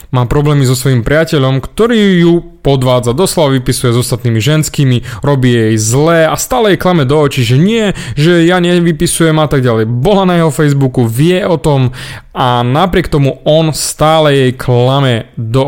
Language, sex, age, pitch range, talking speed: Slovak, male, 30-49, 125-185 Hz, 170 wpm